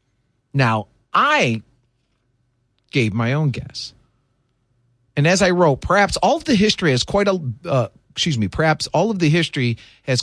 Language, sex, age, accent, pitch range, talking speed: English, male, 40-59, American, 120-160 Hz, 160 wpm